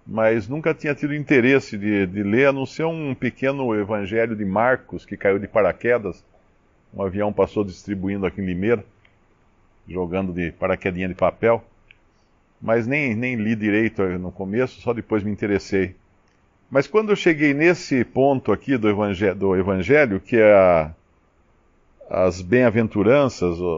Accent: Brazilian